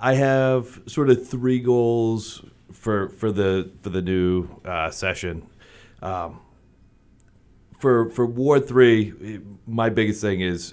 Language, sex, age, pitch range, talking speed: English, male, 30-49, 85-110 Hz, 130 wpm